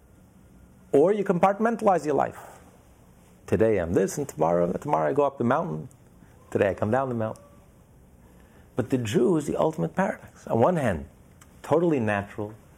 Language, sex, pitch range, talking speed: English, male, 100-150 Hz, 165 wpm